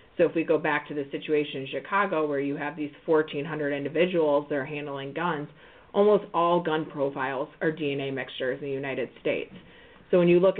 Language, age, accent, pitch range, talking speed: English, 30-49, American, 140-165 Hz, 205 wpm